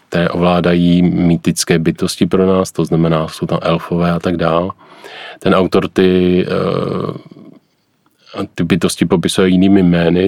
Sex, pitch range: male, 85-90 Hz